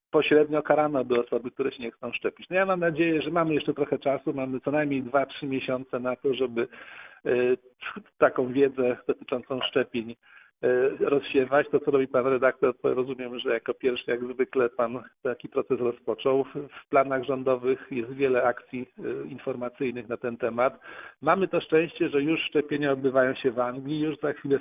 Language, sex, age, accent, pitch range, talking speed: Polish, male, 50-69, native, 130-170 Hz, 175 wpm